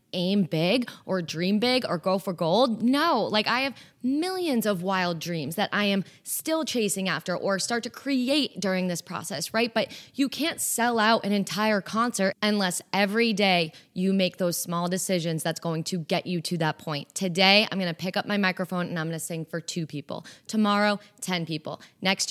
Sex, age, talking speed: female, 20-39, 200 wpm